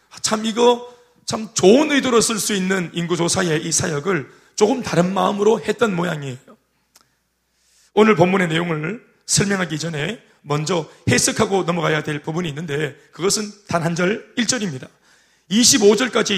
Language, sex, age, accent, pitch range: Korean, male, 30-49, native, 155-225 Hz